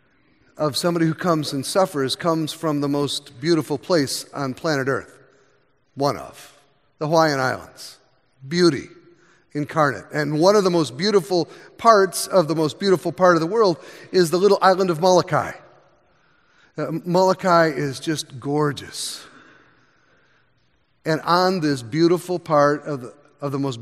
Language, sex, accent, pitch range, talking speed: English, male, American, 145-180 Hz, 145 wpm